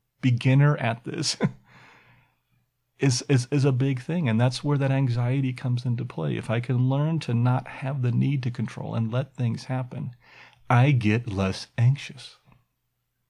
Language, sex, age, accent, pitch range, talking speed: English, male, 40-59, American, 110-135 Hz, 160 wpm